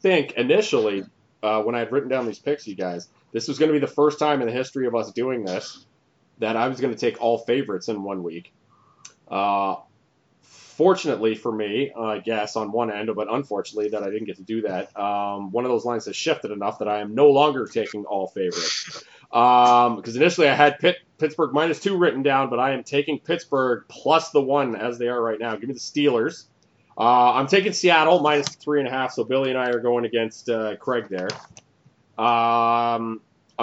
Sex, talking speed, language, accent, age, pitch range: male, 215 wpm, English, American, 30-49, 110-145 Hz